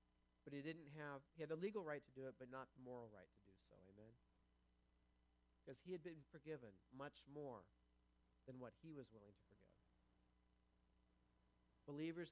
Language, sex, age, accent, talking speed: English, male, 50-69, American, 175 wpm